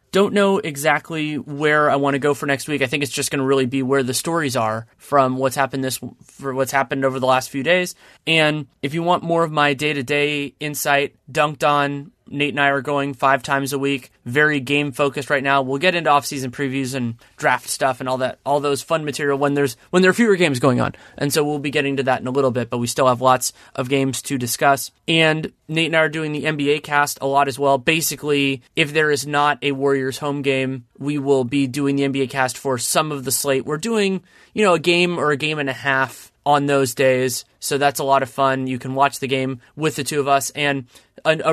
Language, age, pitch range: English, 30-49, 135-150 Hz